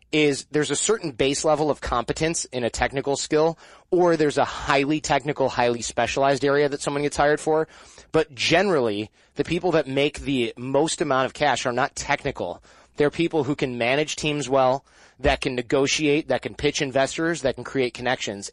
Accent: American